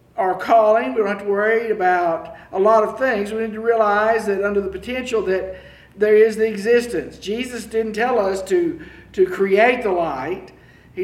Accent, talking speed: American, 190 wpm